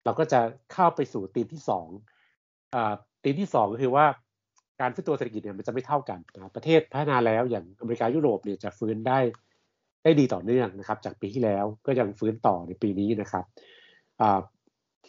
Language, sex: Thai, male